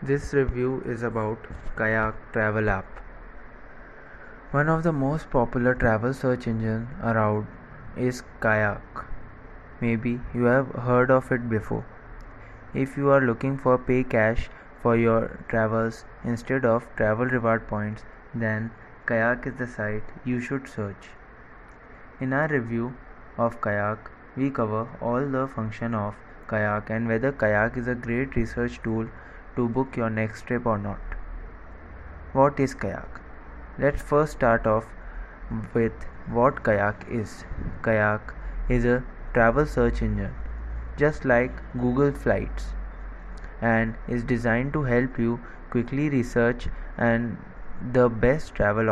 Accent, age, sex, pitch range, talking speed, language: Indian, 20-39, male, 110-125 Hz, 130 wpm, English